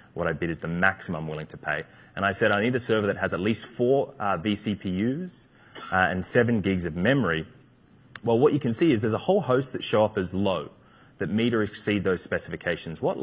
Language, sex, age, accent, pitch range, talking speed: English, male, 30-49, Australian, 95-115 Hz, 235 wpm